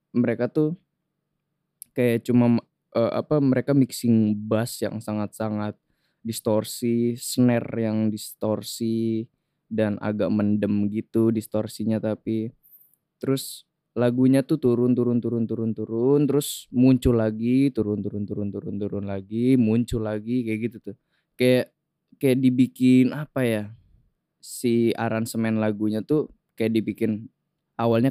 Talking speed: 115 wpm